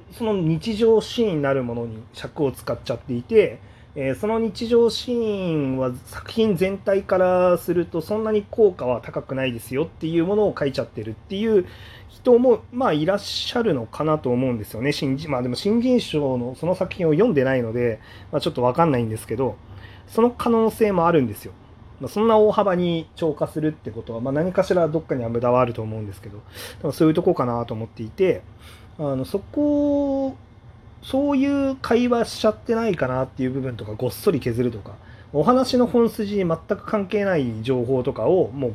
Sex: male